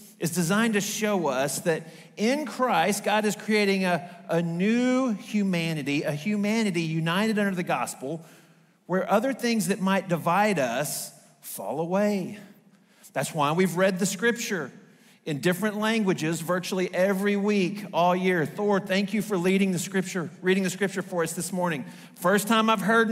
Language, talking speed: English, 160 wpm